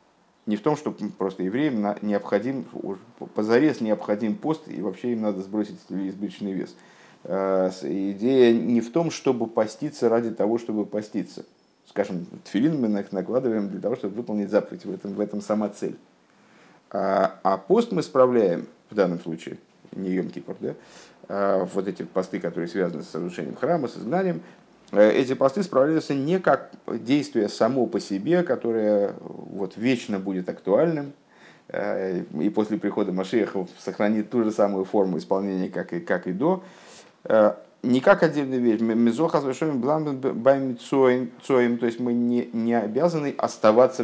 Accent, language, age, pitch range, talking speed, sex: native, Russian, 50-69, 105-135 Hz, 140 wpm, male